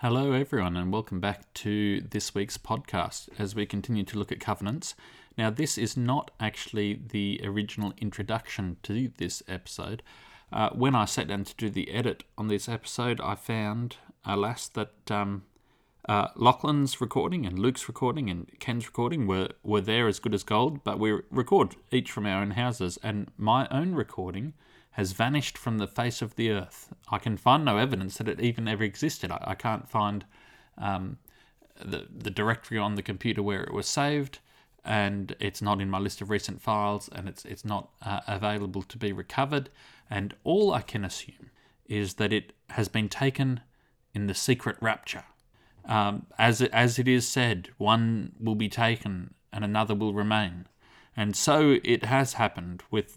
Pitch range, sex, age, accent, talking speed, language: 100-125 Hz, male, 30-49, Australian, 180 wpm, English